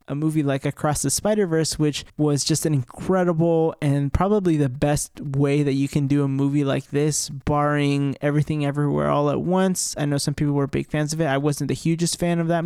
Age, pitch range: 20-39, 140-165 Hz